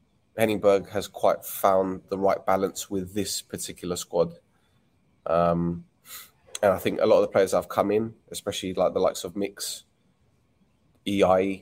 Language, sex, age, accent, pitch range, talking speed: English, male, 20-39, British, 95-110 Hz, 155 wpm